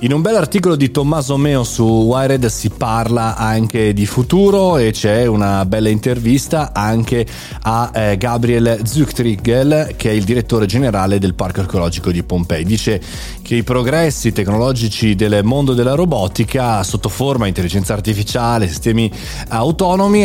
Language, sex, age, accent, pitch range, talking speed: Italian, male, 30-49, native, 105-135 Hz, 145 wpm